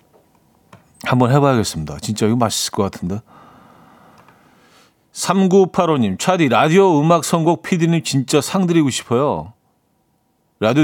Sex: male